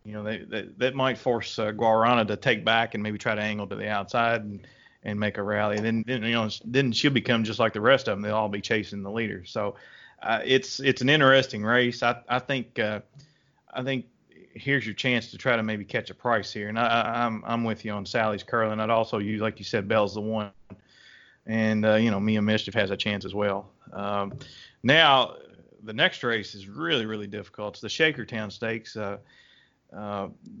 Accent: American